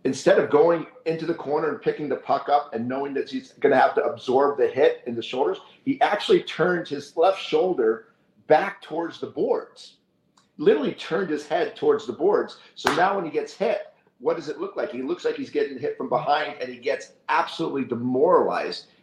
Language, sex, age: English, male, 50-69